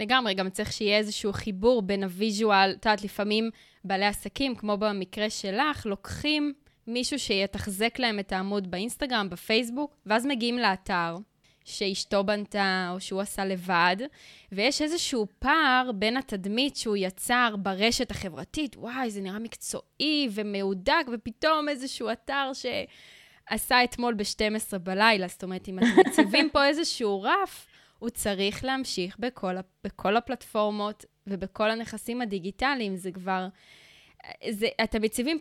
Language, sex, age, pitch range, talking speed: Hebrew, female, 20-39, 200-255 Hz, 125 wpm